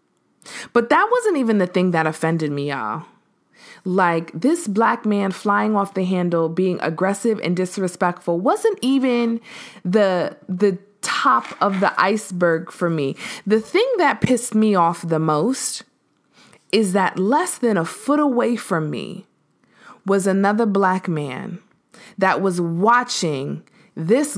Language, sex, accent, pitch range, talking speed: English, female, American, 180-230 Hz, 140 wpm